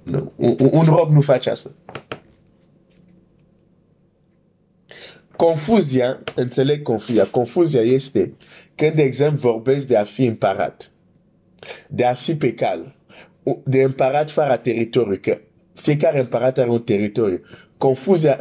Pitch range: 115-155 Hz